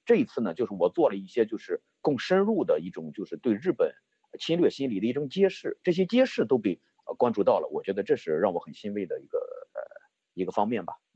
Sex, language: male, Chinese